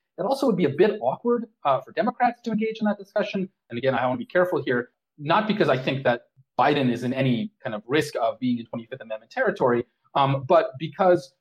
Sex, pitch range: male, 125-180 Hz